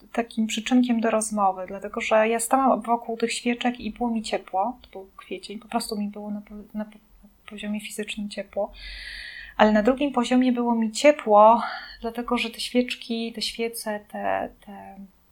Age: 20-39